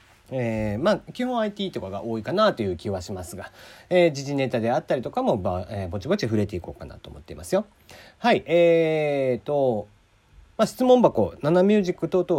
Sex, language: male, Japanese